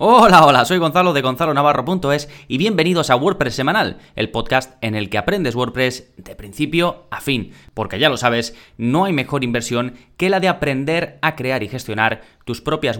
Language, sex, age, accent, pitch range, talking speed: Spanish, male, 20-39, Spanish, 125-155 Hz, 185 wpm